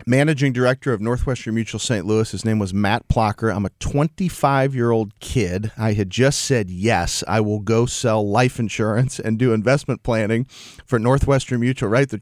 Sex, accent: male, American